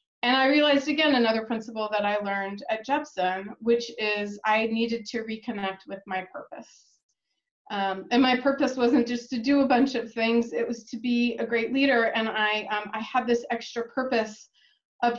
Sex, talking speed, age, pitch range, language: female, 190 wpm, 30-49, 205-240 Hz, English